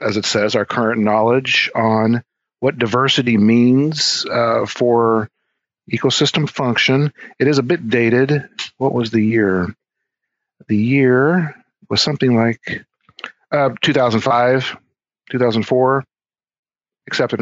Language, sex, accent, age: English, male, American, 50-69